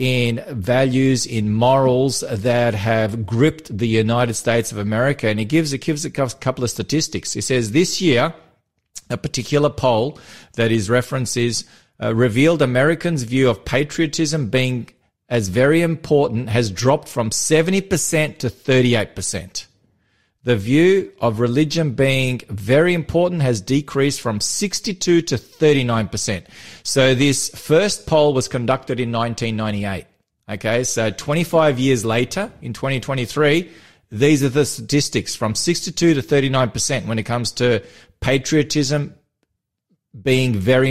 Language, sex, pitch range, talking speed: English, male, 115-145 Hz, 135 wpm